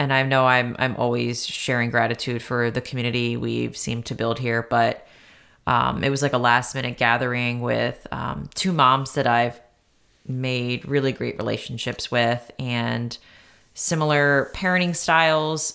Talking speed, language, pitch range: 150 wpm, English, 120-140 Hz